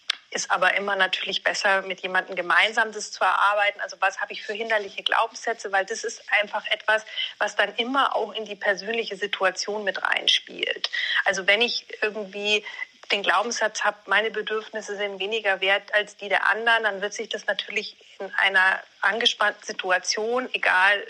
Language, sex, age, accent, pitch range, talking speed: German, female, 30-49, German, 195-225 Hz, 170 wpm